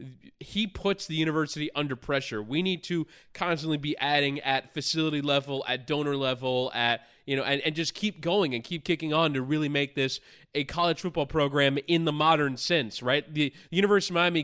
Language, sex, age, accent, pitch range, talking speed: English, male, 20-39, American, 130-160 Hz, 200 wpm